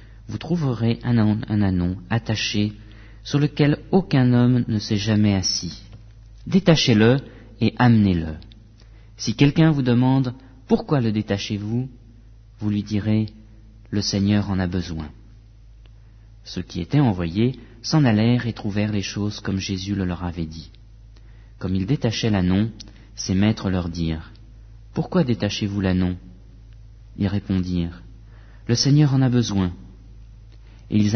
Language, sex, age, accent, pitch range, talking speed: English, male, 40-59, French, 105-120 Hz, 130 wpm